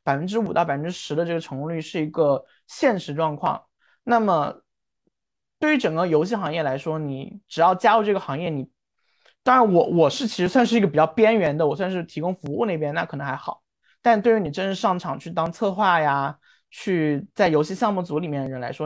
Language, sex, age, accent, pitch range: Chinese, male, 20-39, native, 155-225 Hz